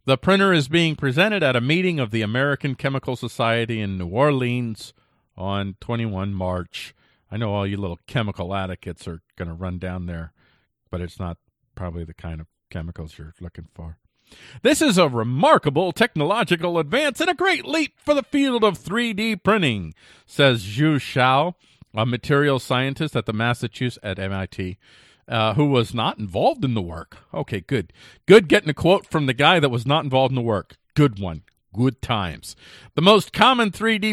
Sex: male